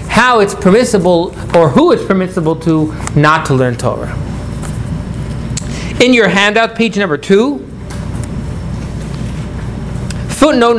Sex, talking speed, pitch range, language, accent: male, 105 wpm, 170-235 Hz, English, American